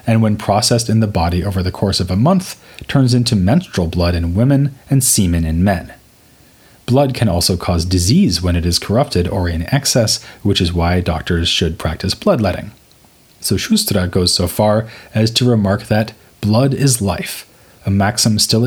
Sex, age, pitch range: male, 30-49, 90-120 Hz